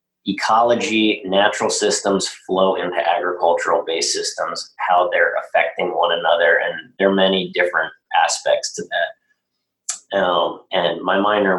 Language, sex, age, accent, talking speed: English, male, 30-49, American, 125 wpm